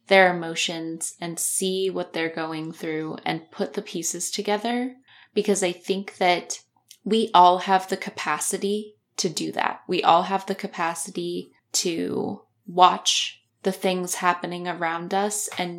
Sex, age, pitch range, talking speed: female, 10-29, 170-195 Hz, 145 wpm